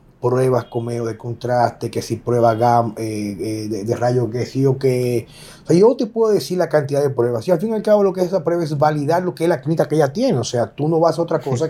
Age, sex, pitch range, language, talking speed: 30-49, male, 130-165 Hz, Spanish, 285 wpm